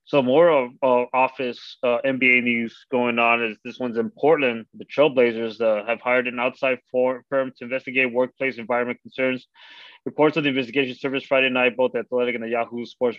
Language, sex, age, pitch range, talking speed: English, male, 20-39, 120-135 Hz, 190 wpm